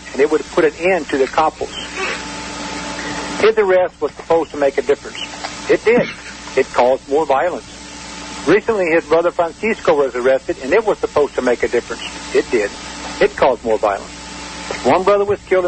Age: 60-79